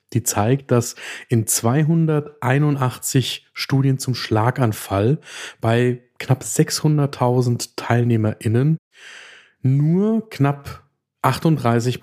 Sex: male